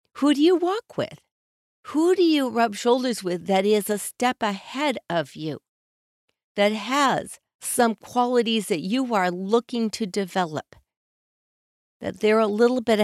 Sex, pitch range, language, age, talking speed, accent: female, 195-250 Hz, English, 50-69, 150 wpm, American